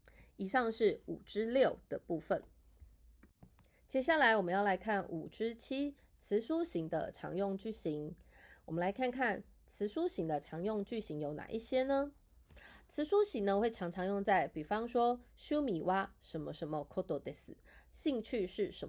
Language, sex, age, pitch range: Japanese, female, 20-39, 170-235 Hz